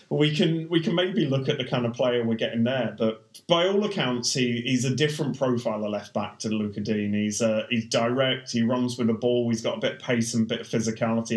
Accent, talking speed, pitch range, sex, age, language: British, 255 wpm, 110-130 Hz, male, 30-49, English